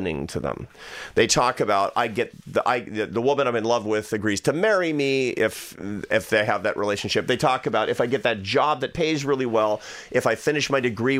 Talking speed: 230 wpm